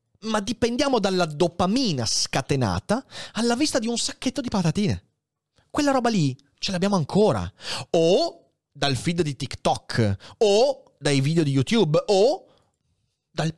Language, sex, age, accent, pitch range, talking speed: Italian, male, 30-49, native, 125-200 Hz, 135 wpm